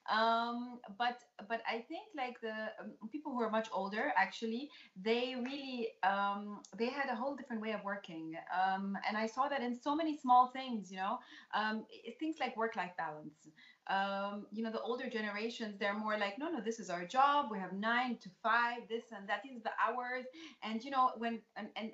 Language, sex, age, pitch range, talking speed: English, female, 30-49, 200-250 Hz, 200 wpm